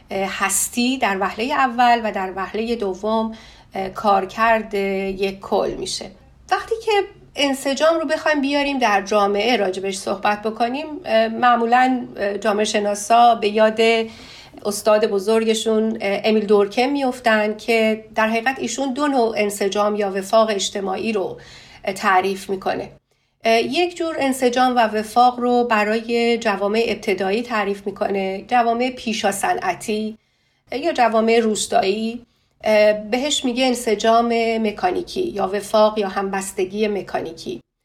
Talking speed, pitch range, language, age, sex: 115 wpm, 210-245 Hz, Persian, 40-59, female